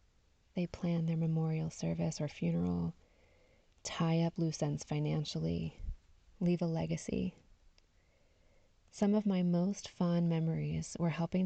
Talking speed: 120 wpm